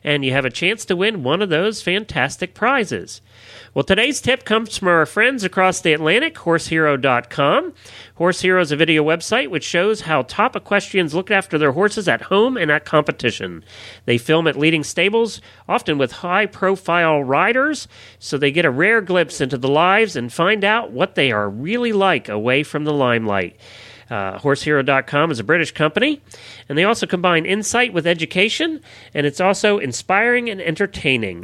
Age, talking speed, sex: 40-59, 175 wpm, male